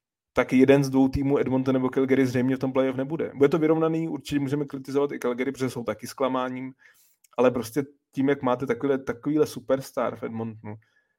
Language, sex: Czech, male